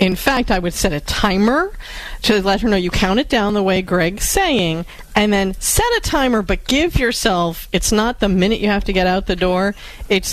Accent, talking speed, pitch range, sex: American, 225 wpm, 170-215 Hz, female